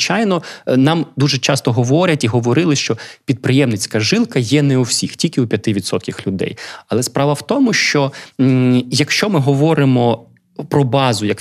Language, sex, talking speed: Ukrainian, male, 155 wpm